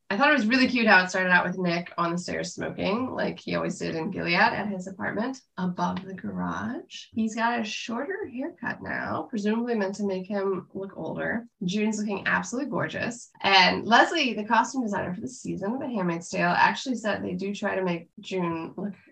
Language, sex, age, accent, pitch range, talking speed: English, female, 20-39, American, 185-235 Hz, 205 wpm